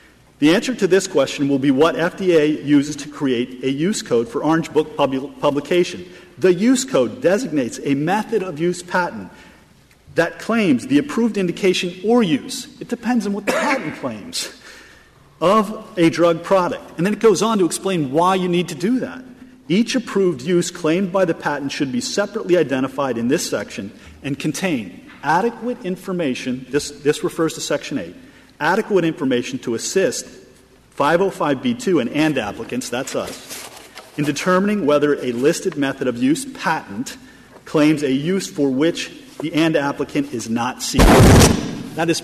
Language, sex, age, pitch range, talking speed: English, male, 40-59, 145-205 Hz, 165 wpm